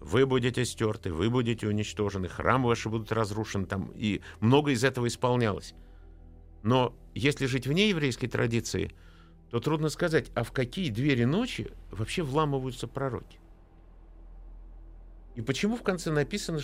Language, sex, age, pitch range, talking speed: Russian, male, 50-69, 90-135 Hz, 135 wpm